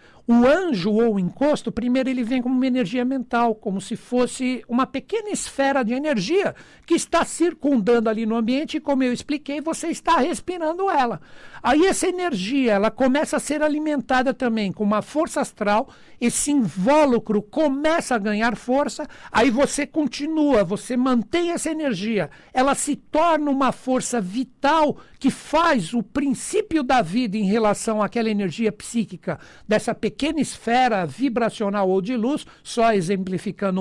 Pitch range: 215-290 Hz